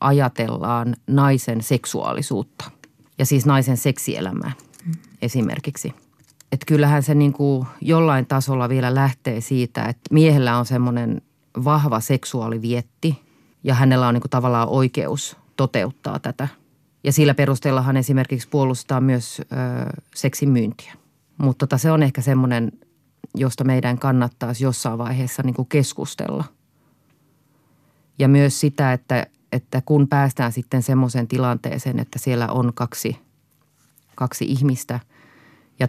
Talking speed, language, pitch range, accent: 105 wpm, Finnish, 125-145 Hz, native